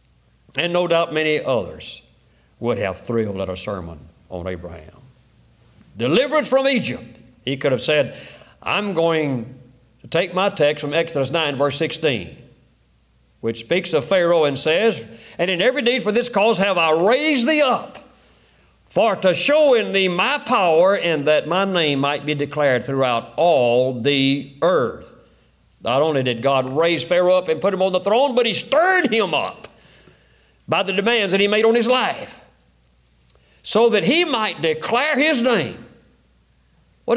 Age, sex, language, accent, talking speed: 50-69, male, English, American, 165 wpm